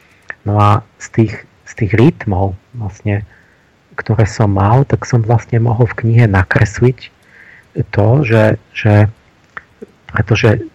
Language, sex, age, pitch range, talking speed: Slovak, male, 40-59, 105-120 Hz, 125 wpm